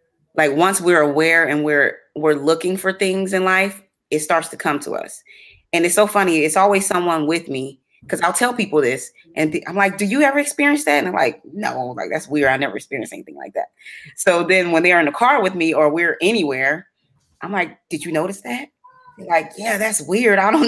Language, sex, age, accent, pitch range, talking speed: English, female, 20-39, American, 155-200 Hz, 230 wpm